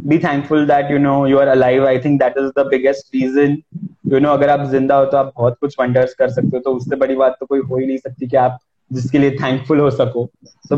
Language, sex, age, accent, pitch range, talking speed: Hindi, male, 20-39, native, 140-165 Hz, 260 wpm